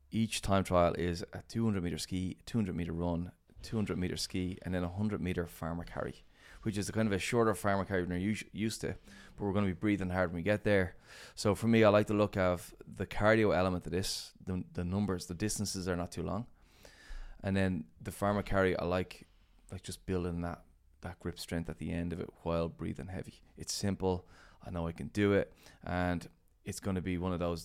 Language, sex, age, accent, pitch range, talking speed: English, male, 20-39, Irish, 85-100 Hz, 230 wpm